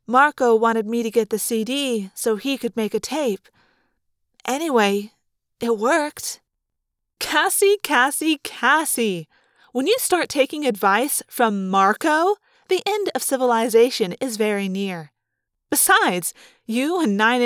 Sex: female